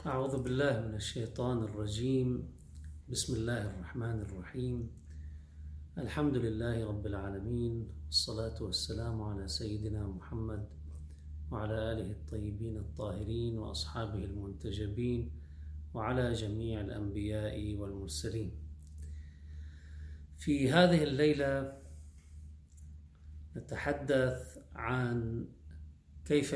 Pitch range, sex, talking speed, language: 75-125 Hz, male, 75 wpm, Arabic